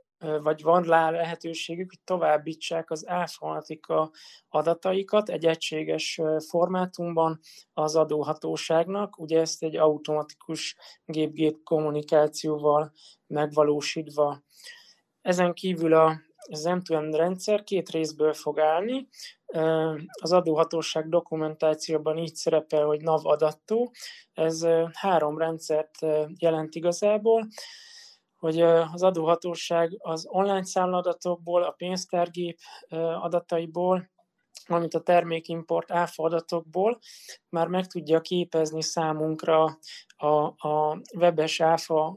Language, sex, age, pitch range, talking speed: Hungarian, male, 20-39, 155-175 Hz, 95 wpm